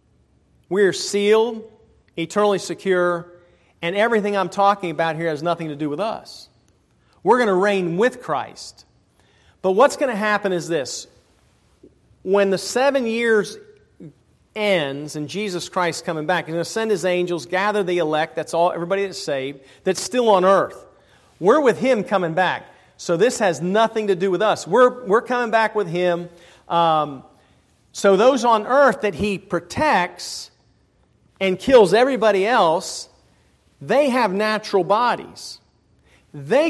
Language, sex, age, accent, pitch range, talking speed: English, male, 40-59, American, 180-225 Hz, 155 wpm